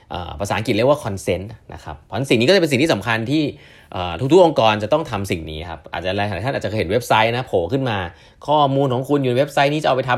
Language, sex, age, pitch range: Thai, male, 20-39, 95-140 Hz